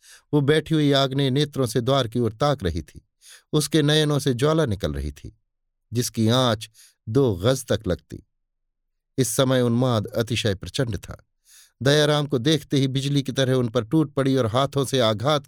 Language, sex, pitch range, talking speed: Hindi, male, 110-140 Hz, 180 wpm